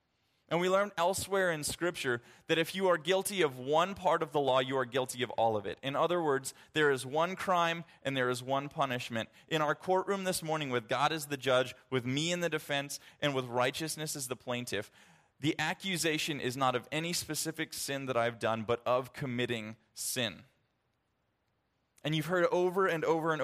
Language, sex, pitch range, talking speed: English, male, 125-160 Hz, 200 wpm